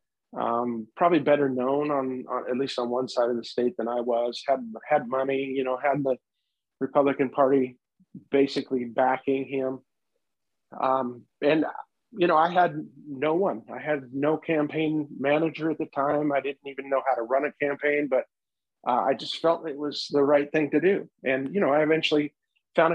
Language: English